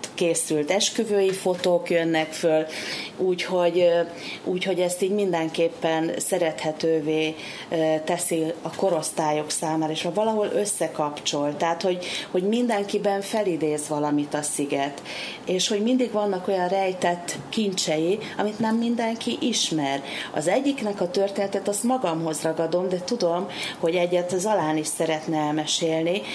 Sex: female